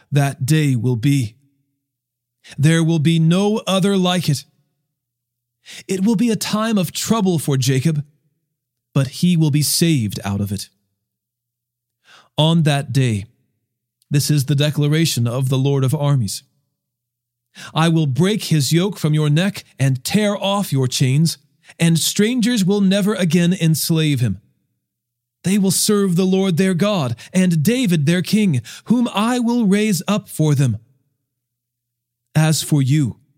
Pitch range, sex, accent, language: 120-170 Hz, male, American, English